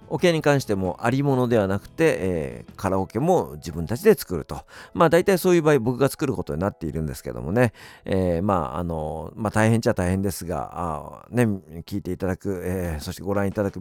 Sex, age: male, 50-69